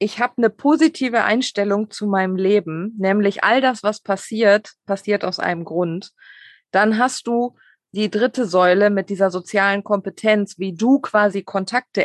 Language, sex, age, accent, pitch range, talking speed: German, female, 20-39, German, 185-230 Hz, 155 wpm